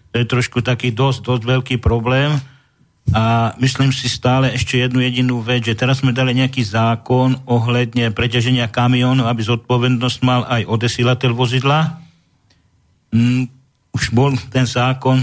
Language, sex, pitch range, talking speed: Slovak, male, 115-130 Hz, 140 wpm